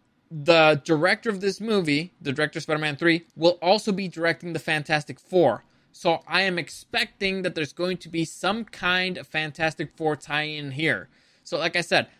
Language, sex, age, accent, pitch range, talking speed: English, male, 20-39, American, 155-190 Hz, 180 wpm